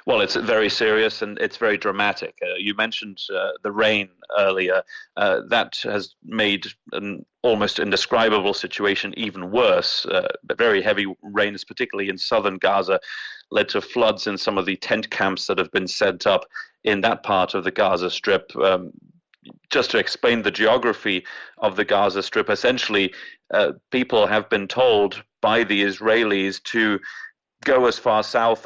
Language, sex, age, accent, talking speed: English, male, 30-49, British, 165 wpm